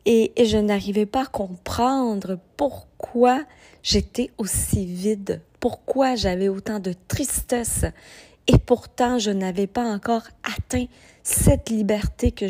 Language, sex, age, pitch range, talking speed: French, female, 30-49, 190-230 Hz, 125 wpm